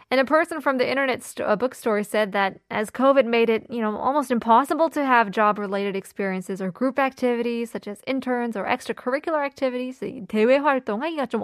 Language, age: Korean, 20-39